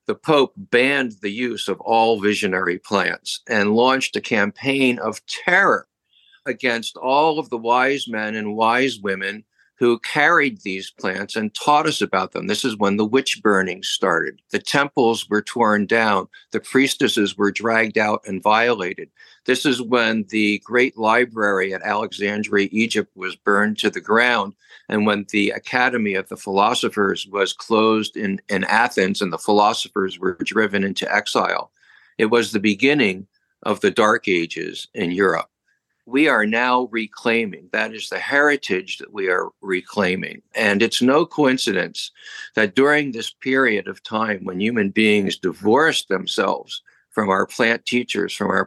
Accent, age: American, 50-69